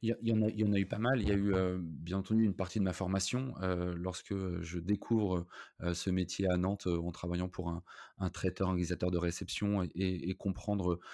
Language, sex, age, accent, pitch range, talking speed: French, male, 20-39, French, 90-100 Hz, 240 wpm